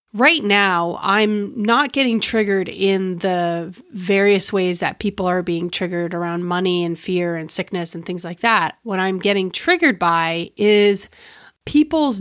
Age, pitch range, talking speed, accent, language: 30-49, 180-215 Hz, 155 wpm, American, English